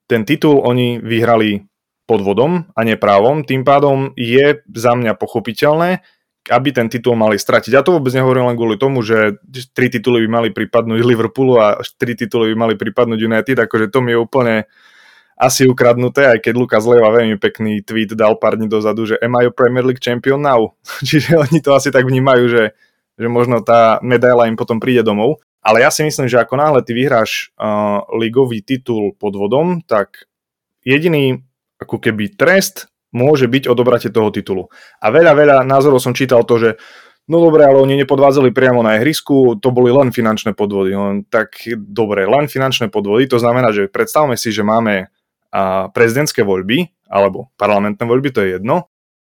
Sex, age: male, 20-39